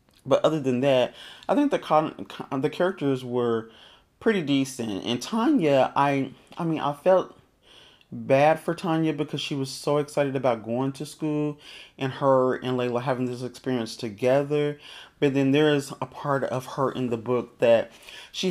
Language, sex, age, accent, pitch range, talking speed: English, male, 30-49, American, 110-145 Hz, 175 wpm